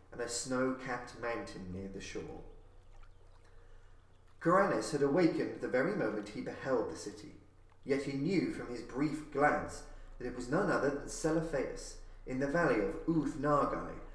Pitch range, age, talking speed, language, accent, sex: 105-160 Hz, 30-49, 150 wpm, English, British, male